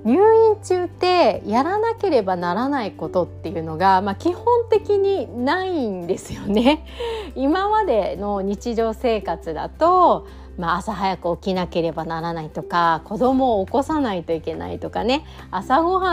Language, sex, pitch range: Japanese, female, 175-290 Hz